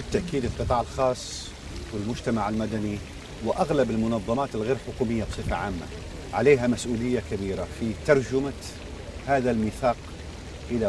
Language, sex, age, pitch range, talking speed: Arabic, male, 50-69, 105-135 Hz, 105 wpm